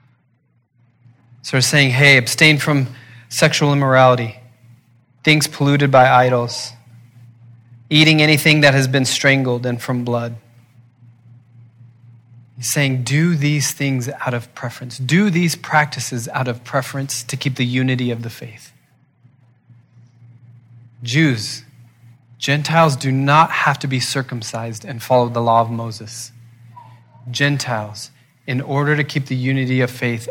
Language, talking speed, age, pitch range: English, 130 wpm, 30-49, 120-135 Hz